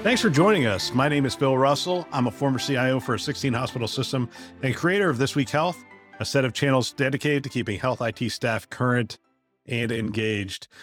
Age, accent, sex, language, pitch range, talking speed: 50-69, American, male, English, 115-145 Hz, 205 wpm